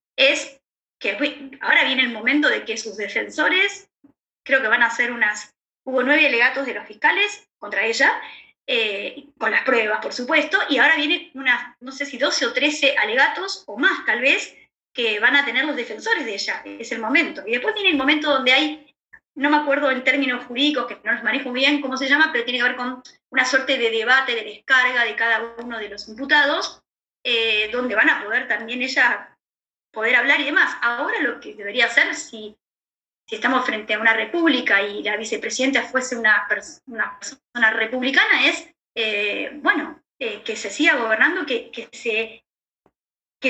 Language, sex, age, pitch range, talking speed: Spanish, female, 20-39, 235-315 Hz, 185 wpm